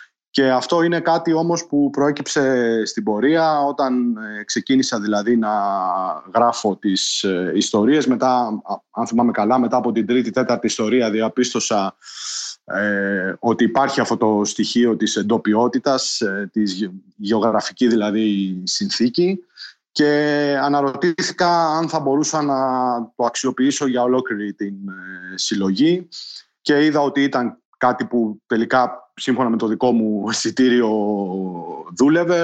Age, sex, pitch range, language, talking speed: 30-49, male, 110-140 Hz, Greek, 115 wpm